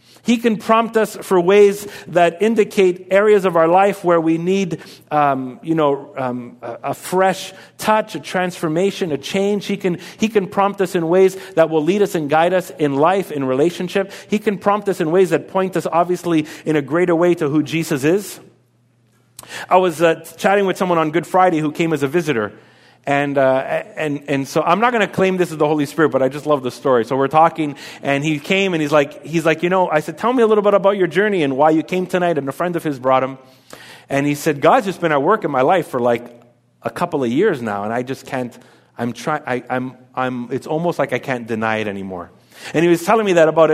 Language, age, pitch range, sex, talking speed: English, 40-59, 135-185 Hz, male, 240 wpm